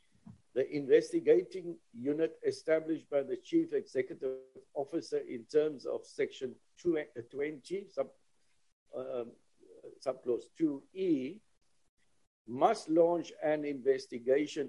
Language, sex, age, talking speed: English, male, 60-79, 95 wpm